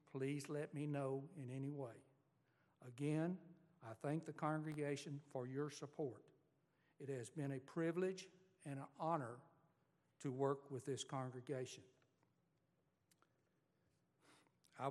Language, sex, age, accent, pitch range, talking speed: English, male, 60-79, American, 135-160 Hz, 115 wpm